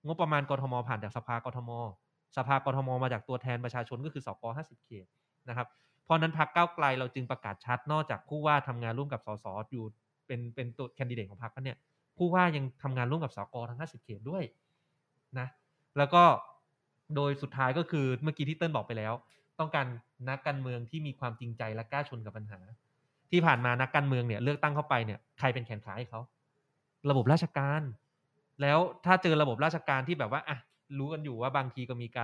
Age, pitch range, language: 20-39, 125-150 Hz, Thai